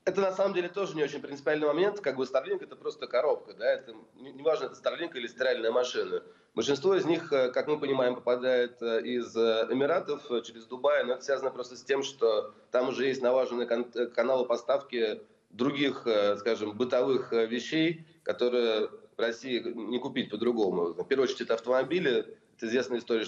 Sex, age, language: male, 30-49, Russian